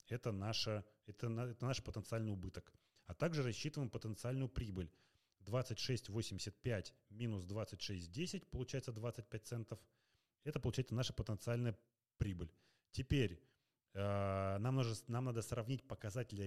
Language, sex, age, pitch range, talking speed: Russian, male, 30-49, 100-130 Hz, 115 wpm